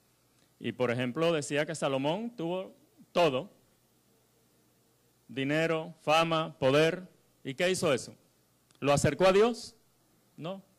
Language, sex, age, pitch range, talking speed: Spanish, male, 30-49, 125-205 Hz, 110 wpm